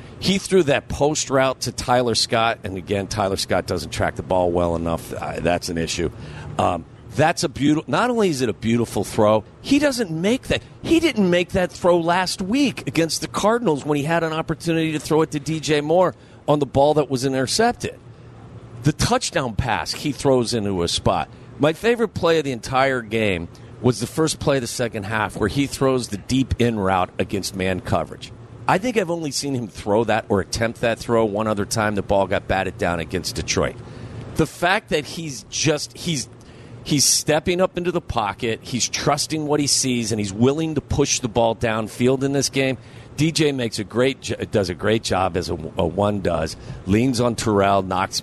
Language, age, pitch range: English, 50-69, 105-150 Hz